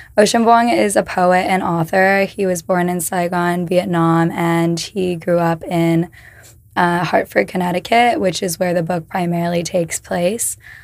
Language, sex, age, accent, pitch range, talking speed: English, female, 10-29, American, 175-195 Hz, 160 wpm